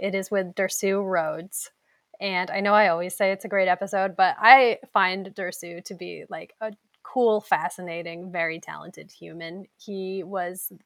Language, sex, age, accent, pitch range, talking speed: English, female, 20-39, American, 185-235 Hz, 165 wpm